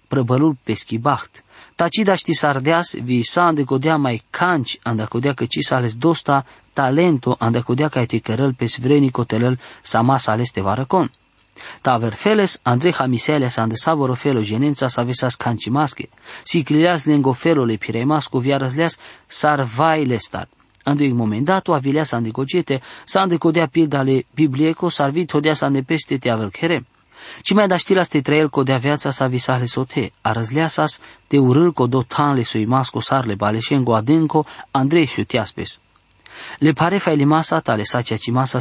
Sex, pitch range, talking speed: male, 120-155 Hz, 160 wpm